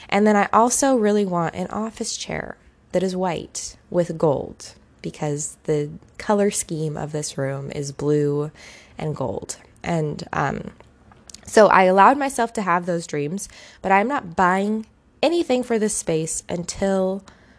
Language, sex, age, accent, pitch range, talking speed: English, female, 20-39, American, 160-210 Hz, 150 wpm